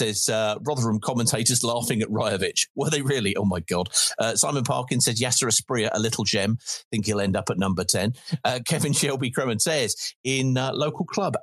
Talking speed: 200 wpm